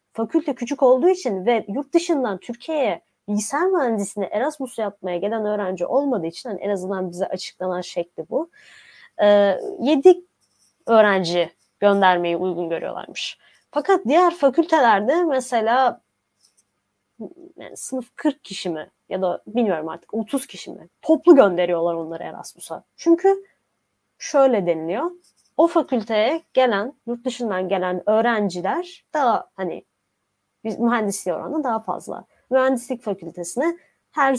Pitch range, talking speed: 200-280 Hz, 115 wpm